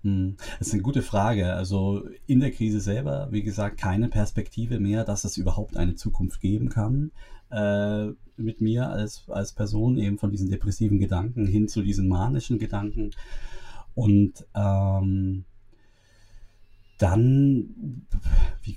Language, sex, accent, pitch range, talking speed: German, male, German, 95-110 Hz, 135 wpm